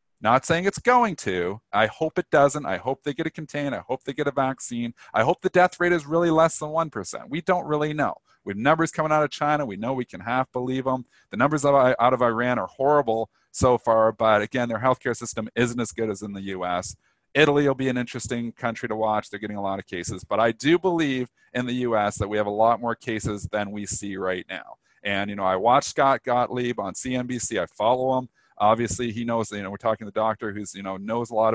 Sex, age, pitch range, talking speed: male, 40-59, 105-135 Hz, 245 wpm